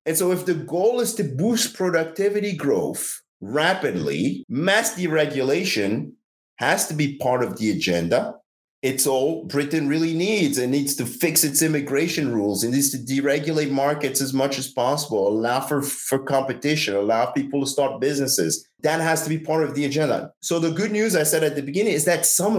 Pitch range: 120-155 Hz